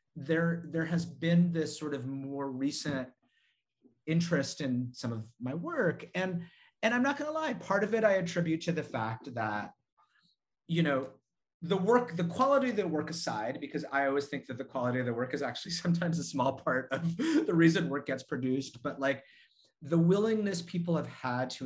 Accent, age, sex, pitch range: American, 30-49, male, 120-170 Hz